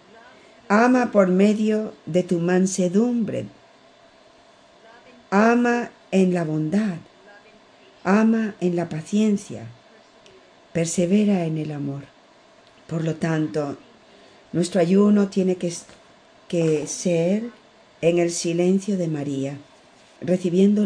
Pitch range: 170-220 Hz